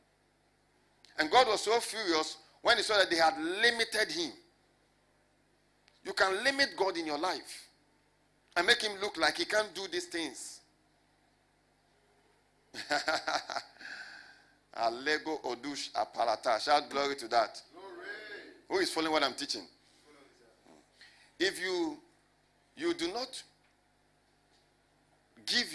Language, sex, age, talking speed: English, male, 50-69, 115 wpm